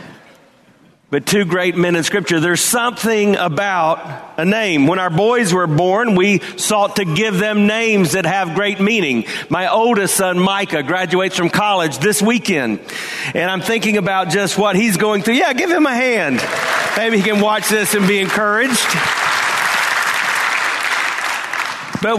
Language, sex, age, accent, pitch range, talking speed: English, male, 40-59, American, 170-215 Hz, 155 wpm